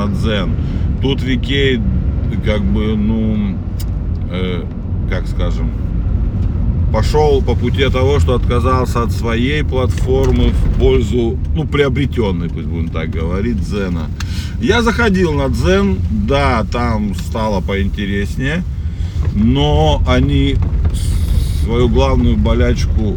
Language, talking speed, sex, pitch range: Russian, 105 wpm, male, 80-100 Hz